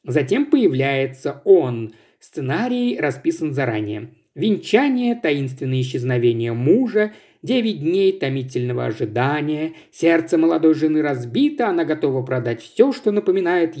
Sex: male